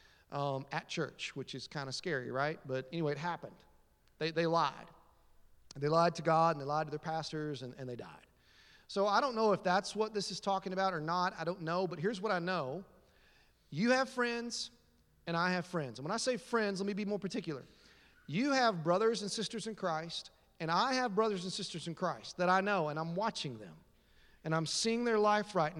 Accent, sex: American, male